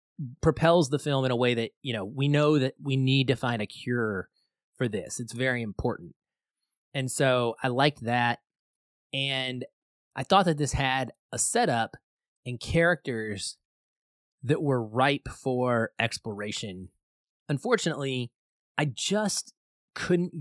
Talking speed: 140 wpm